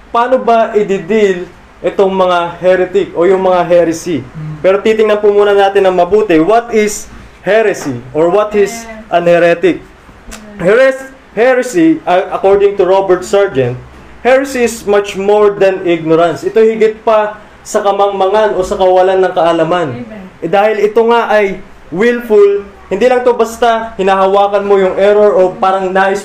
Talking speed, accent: 145 wpm, native